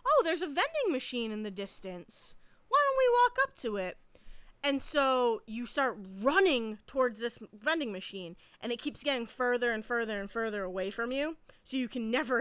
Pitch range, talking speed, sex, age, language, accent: 230-320 Hz, 195 wpm, female, 20-39, English, American